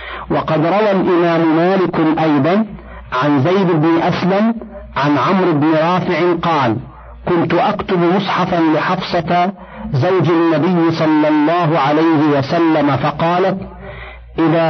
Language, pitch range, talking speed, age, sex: Arabic, 155-185 Hz, 105 wpm, 50-69, male